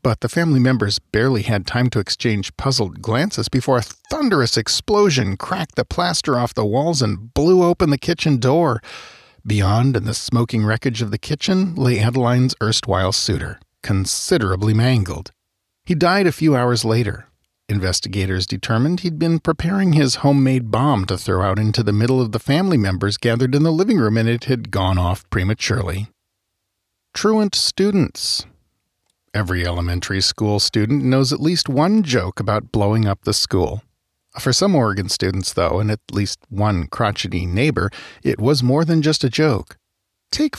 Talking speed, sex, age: 165 wpm, male, 40-59